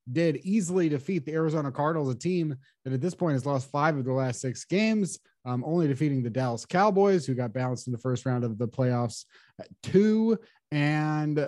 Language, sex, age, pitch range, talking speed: English, male, 30-49, 130-155 Hz, 200 wpm